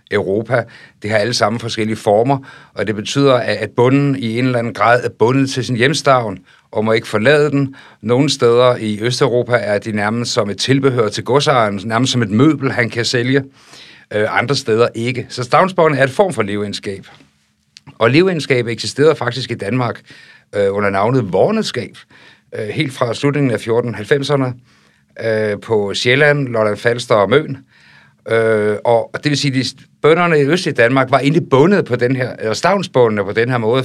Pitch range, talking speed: 110-135 Hz, 175 wpm